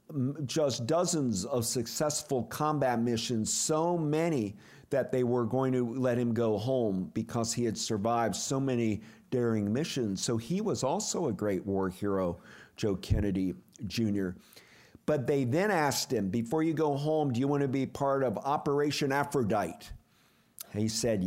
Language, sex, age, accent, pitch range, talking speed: English, male, 50-69, American, 115-145 Hz, 160 wpm